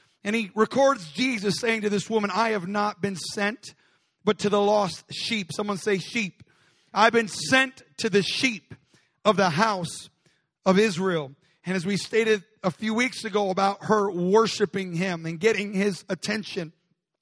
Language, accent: English, American